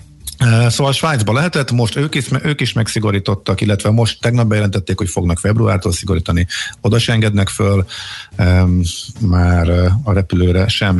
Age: 50-69